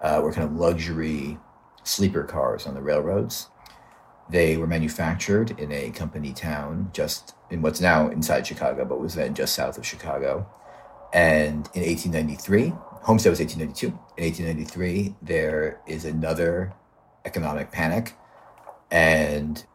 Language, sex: English, male